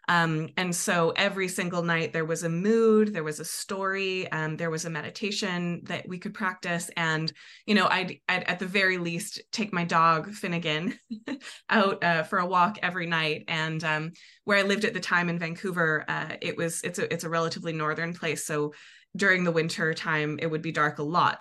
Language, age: English, 20-39